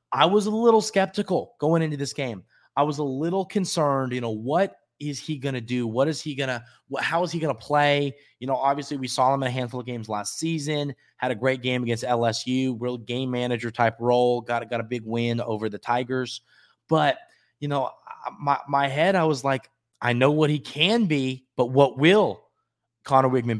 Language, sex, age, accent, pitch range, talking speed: English, male, 20-39, American, 115-145 Hz, 215 wpm